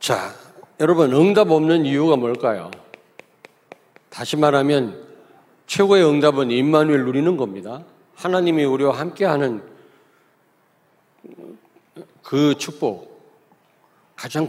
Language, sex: Korean, male